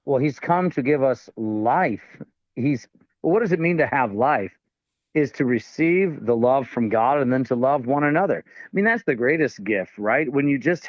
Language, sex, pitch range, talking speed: English, male, 125-160 Hz, 210 wpm